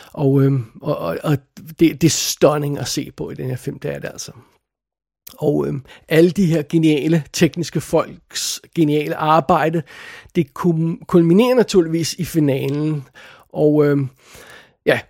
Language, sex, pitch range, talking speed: Danish, male, 150-180 Hz, 140 wpm